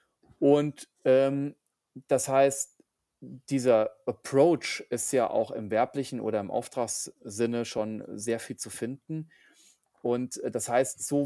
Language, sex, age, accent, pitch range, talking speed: German, male, 30-49, German, 125-155 Hz, 125 wpm